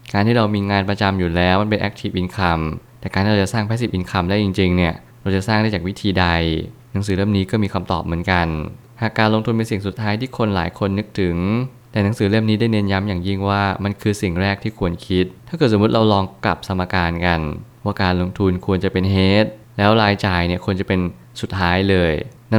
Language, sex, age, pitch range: Thai, male, 20-39, 95-110 Hz